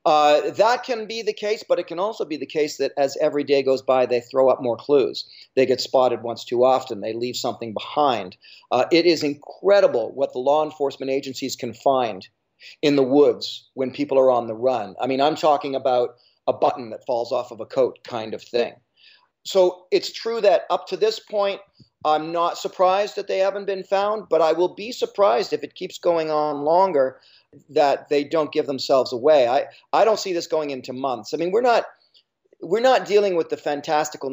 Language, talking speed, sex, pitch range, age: English, 210 wpm, male, 130-180 Hz, 40-59